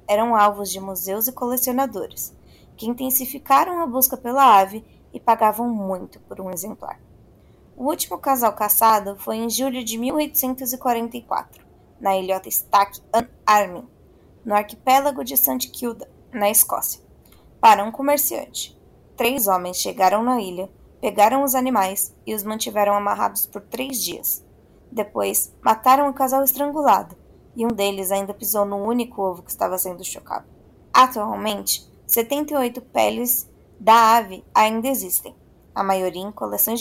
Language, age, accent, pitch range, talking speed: Portuguese, 20-39, Brazilian, 205-255 Hz, 140 wpm